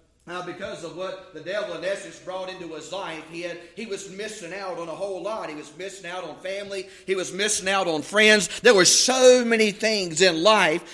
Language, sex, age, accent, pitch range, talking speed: English, male, 30-49, American, 180-230 Hz, 220 wpm